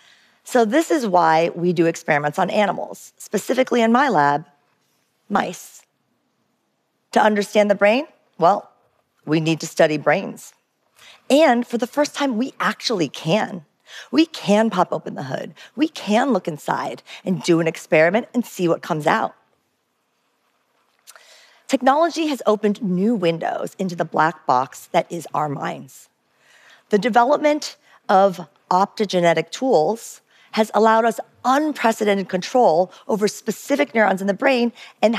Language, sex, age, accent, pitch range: Japanese, female, 40-59, American, 170-235 Hz